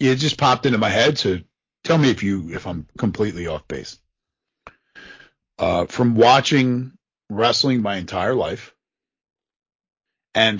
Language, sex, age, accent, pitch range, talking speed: English, male, 40-59, American, 95-130 Hz, 140 wpm